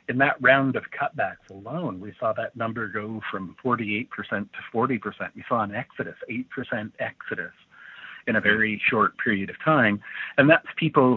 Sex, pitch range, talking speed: male, 105-125 Hz, 165 wpm